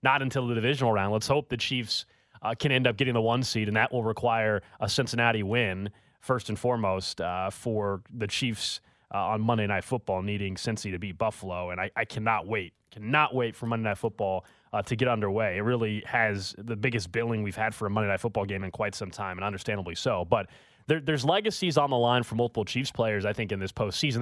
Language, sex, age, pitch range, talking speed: English, male, 20-39, 110-155 Hz, 230 wpm